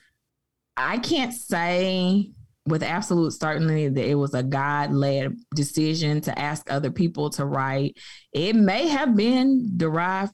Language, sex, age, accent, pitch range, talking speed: English, female, 20-39, American, 150-205 Hz, 140 wpm